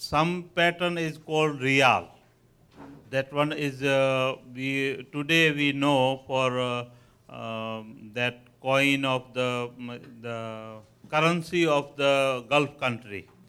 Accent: Indian